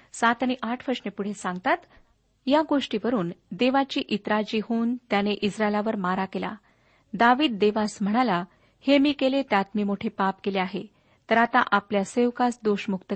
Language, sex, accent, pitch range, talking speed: Marathi, female, native, 200-260 Hz, 145 wpm